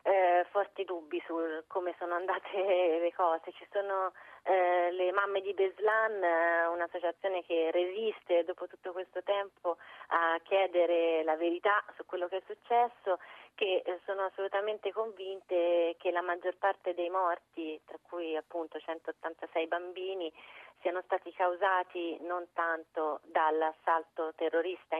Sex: female